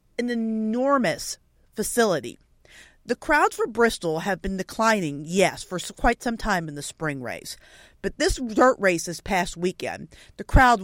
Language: English